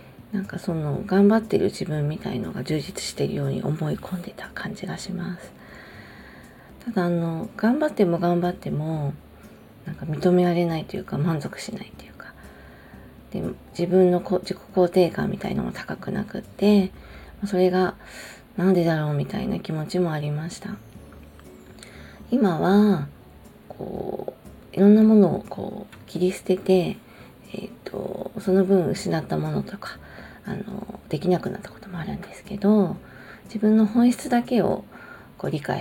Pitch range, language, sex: 155-205 Hz, Japanese, female